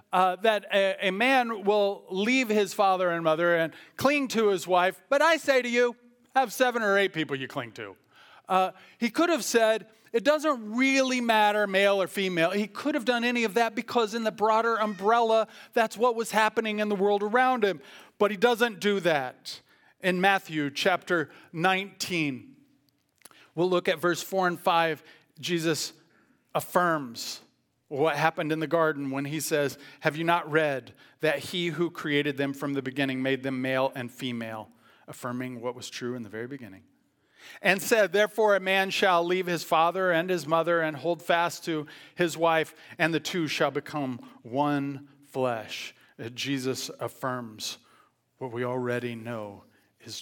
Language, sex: English, male